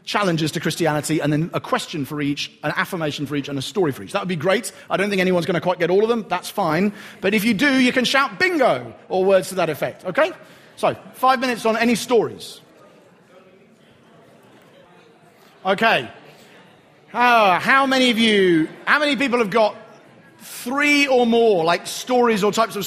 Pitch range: 175-245 Hz